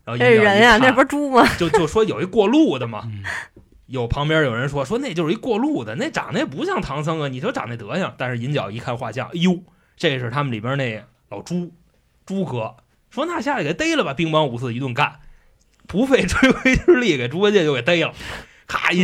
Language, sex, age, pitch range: Chinese, male, 20-39, 110-165 Hz